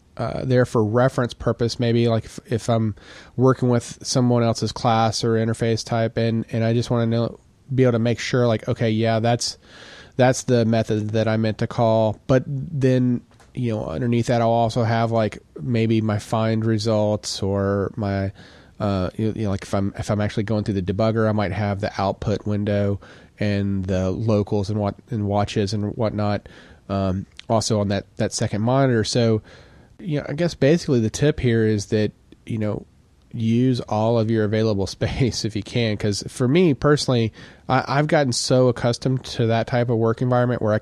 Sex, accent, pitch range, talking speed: male, American, 105-120 Hz, 195 wpm